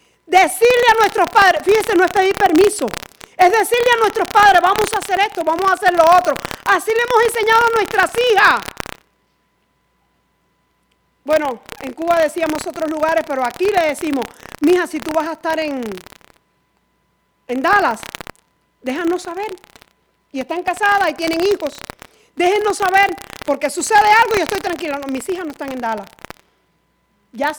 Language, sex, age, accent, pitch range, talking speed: Spanish, female, 40-59, American, 275-385 Hz, 160 wpm